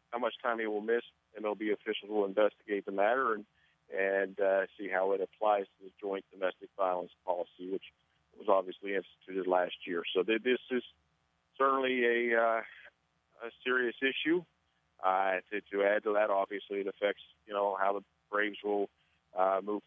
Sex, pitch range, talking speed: male, 100-115 Hz, 175 wpm